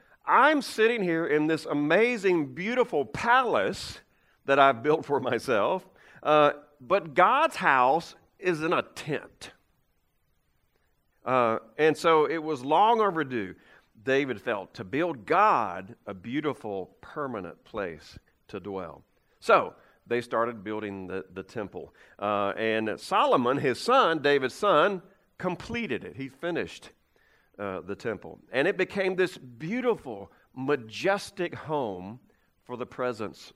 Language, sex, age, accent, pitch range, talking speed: English, male, 50-69, American, 110-170 Hz, 125 wpm